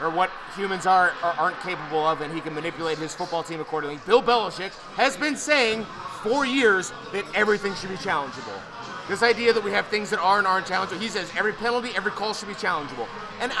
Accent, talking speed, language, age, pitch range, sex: American, 210 wpm, English, 30-49, 190-250 Hz, male